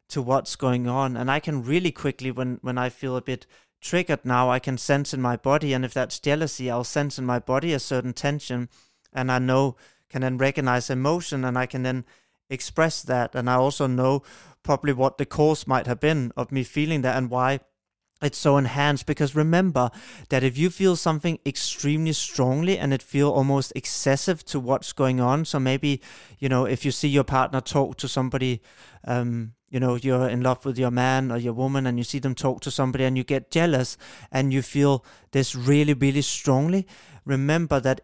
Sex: male